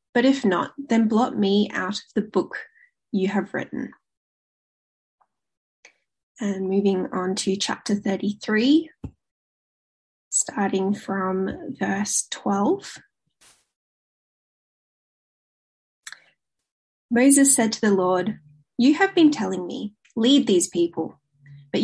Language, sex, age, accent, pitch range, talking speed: English, female, 10-29, Australian, 190-255 Hz, 100 wpm